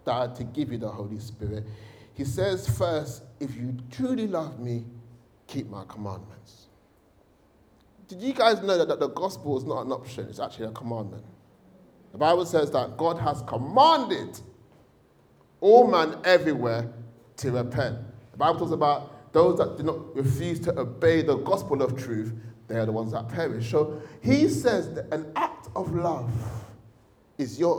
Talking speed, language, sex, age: 165 wpm, English, male, 30-49